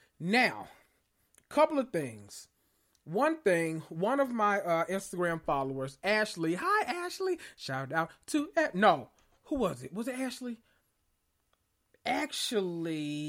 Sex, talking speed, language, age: male, 120 wpm, English, 30-49